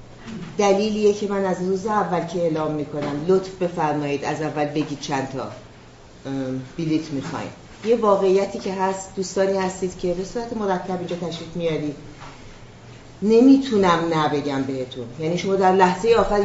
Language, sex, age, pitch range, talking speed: Persian, female, 40-59, 140-180 Hz, 140 wpm